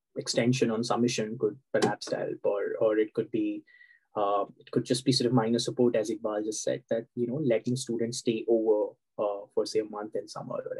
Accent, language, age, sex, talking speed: Indian, English, 20-39, male, 215 wpm